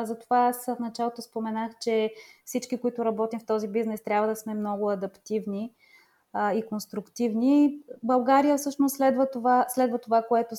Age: 20-39